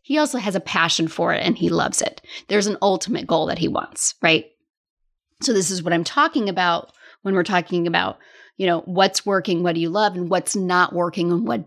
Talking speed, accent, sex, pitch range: 225 wpm, American, female, 170-235 Hz